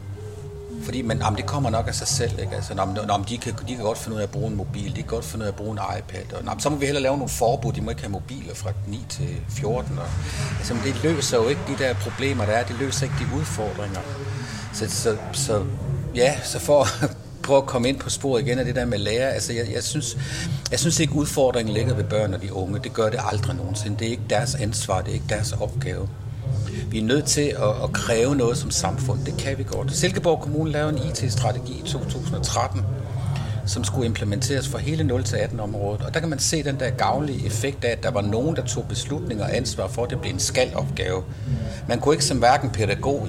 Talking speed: 245 wpm